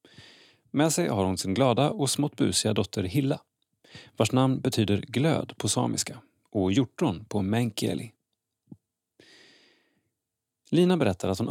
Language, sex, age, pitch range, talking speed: Swedish, male, 30-49, 100-130 Hz, 125 wpm